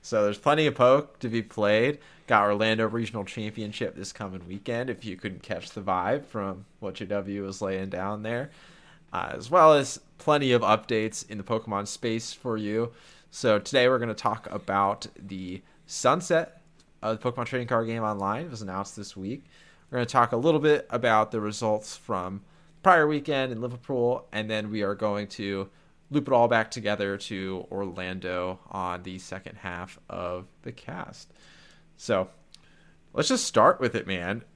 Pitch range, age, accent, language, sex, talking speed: 100-125 Hz, 20-39, American, English, male, 180 wpm